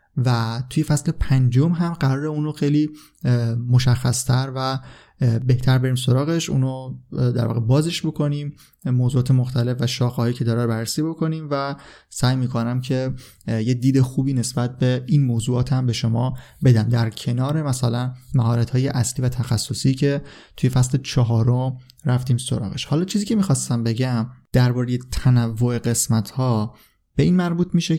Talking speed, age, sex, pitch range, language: 150 wpm, 20-39, male, 115-140 Hz, Persian